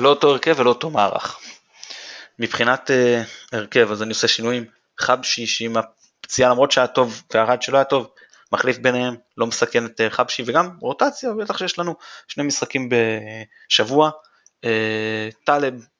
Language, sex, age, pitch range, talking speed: Hebrew, male, 20-39, 115-145 Hz, 150 wpm